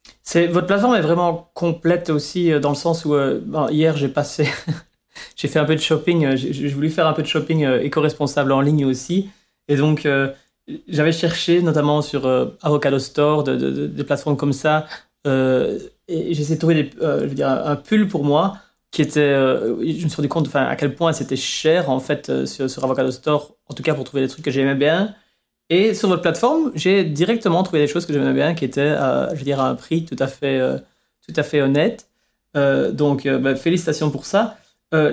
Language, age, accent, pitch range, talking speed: English, 30-49, French, 140-165 Hz, 210 wpm